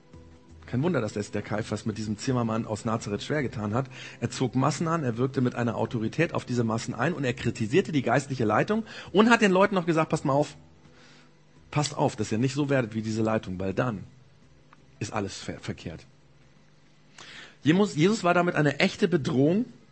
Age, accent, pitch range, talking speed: 40-59, German, 120-160 Hz, 195 wpm